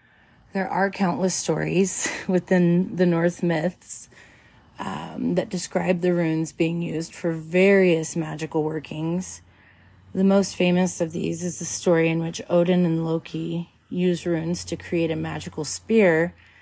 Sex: female